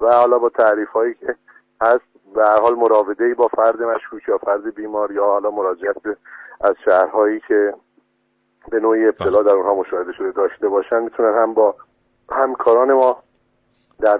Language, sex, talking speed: Persian, male, 155 wpm